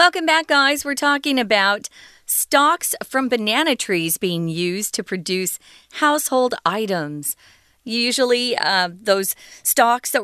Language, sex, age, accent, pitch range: Chinese, female, 40-59, American, 185-265 Hz